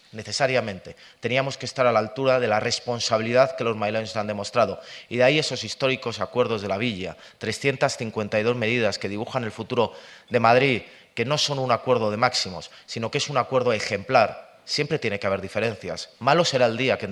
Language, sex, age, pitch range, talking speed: Spanish, male, 30-49, 110-135 Hz, 195 wpm